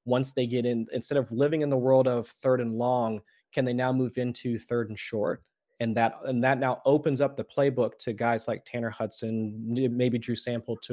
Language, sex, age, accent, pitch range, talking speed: English, male, 30-49, American, 120-140 Hz, 220 wpm